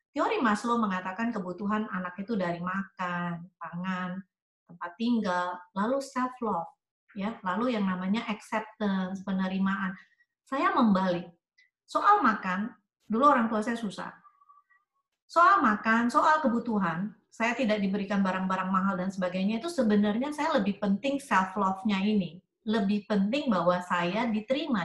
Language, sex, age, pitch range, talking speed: Indonesian, female, 30-49, 190-255 Hz, 125 wpm